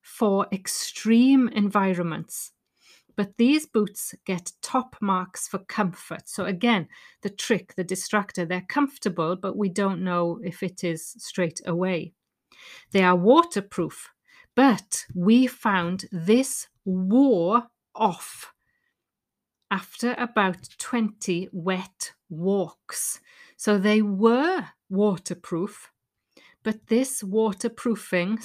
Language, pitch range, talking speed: English, 185-235 Hz, 105 wpm